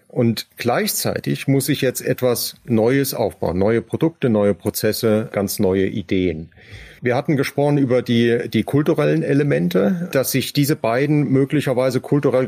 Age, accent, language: 40-59, German, German